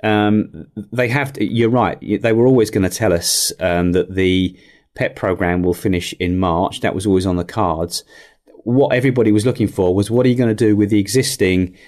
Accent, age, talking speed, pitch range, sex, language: British, 30-49, 215 wpm, 95-115 Hz, male, English